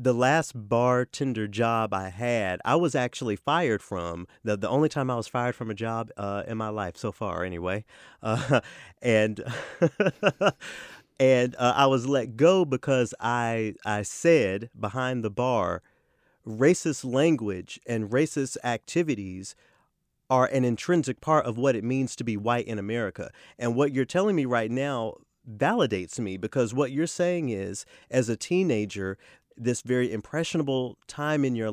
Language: English